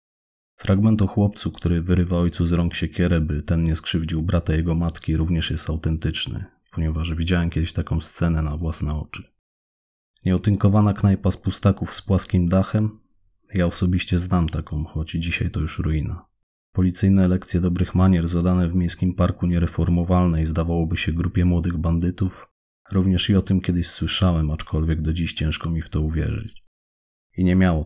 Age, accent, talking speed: 30-49, native, 160 wpm